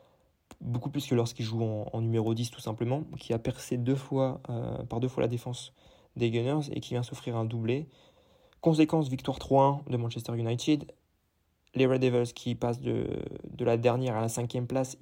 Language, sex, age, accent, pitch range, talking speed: French, male, 20-39, French, 115-135 Hz, 190 wpm